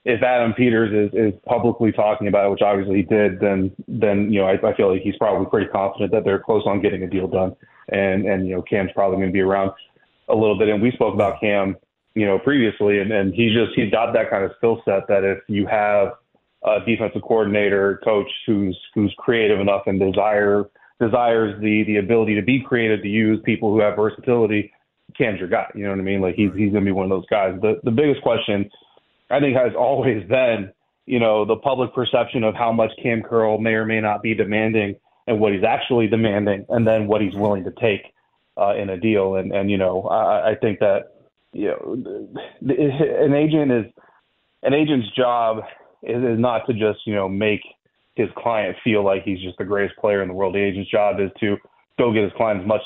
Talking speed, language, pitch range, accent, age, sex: 225 wpm, English, 100-115 Hz, American, 20-39, male